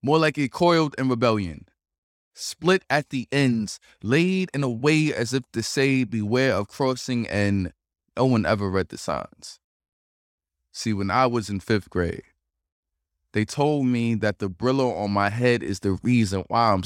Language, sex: English, male